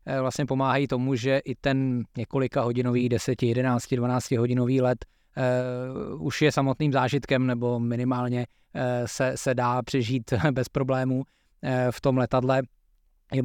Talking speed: 130 wpm